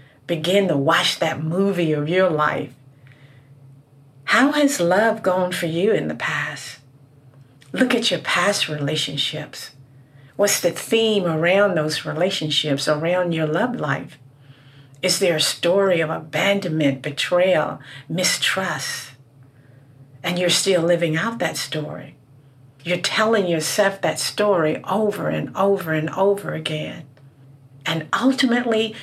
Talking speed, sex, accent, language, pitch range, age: 125 wpm, female, American, English, 140-185 Hz, 50-69